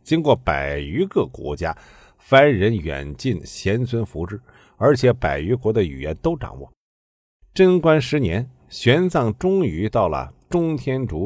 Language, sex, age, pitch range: Chinese, male, 50-69, 85-140 Hz